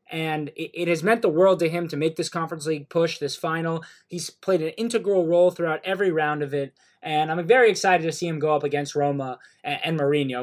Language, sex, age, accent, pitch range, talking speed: English, male, 20-39, American, 155-185 Hz, 225 wpm